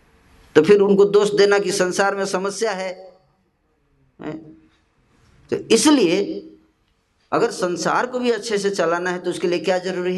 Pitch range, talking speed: 135-200 Hz, 145 wpm